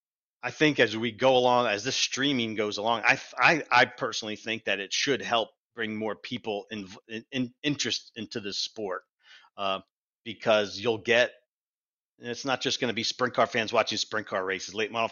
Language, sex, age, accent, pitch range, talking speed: English, male, 40-59, American, 110-125 Hz, 200 wpm